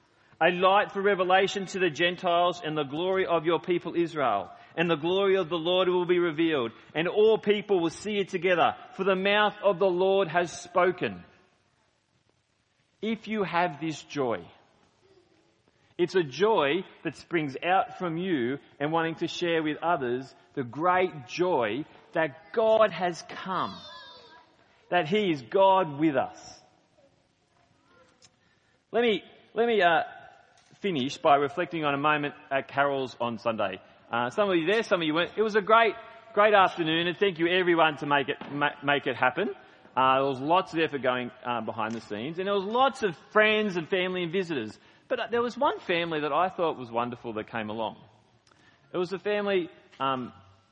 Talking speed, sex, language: 175 wpm, male, English